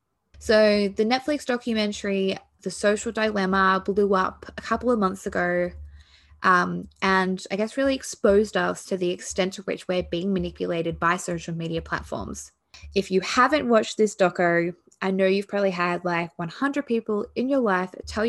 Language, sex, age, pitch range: English, female, 20-39, 175-210 Hz